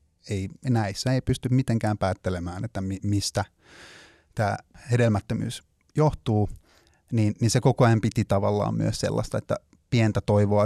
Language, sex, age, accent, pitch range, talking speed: Finnish, male, 30-49, native, 95-120 Hz, 135 wpm